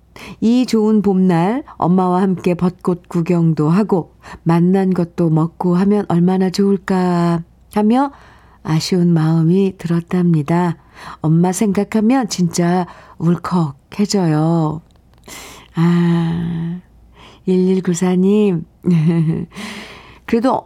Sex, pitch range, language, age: female, 175-210 Hz, Korean, 50-69